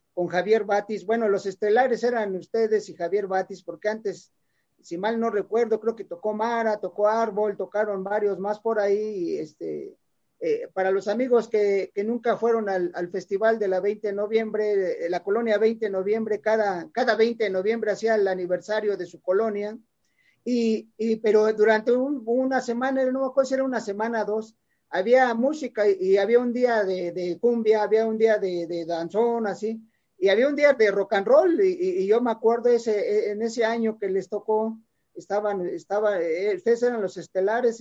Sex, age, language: male, 40-59, English